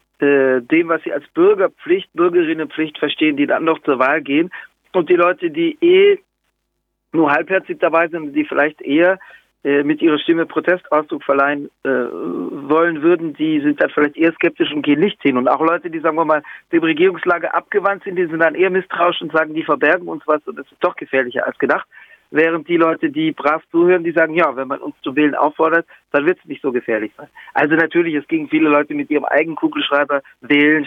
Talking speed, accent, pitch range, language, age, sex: 210 wpm, German, 150-205 Hz, German, 50-69, male